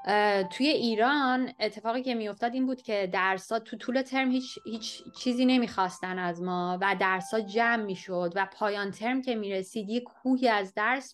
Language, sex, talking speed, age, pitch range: Persian, female, 190 wpm, 20-39, 190-240 Hz